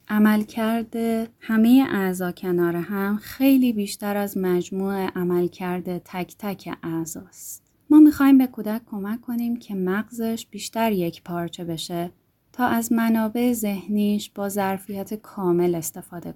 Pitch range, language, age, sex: 185-230 Hz, Persian, 20-39, female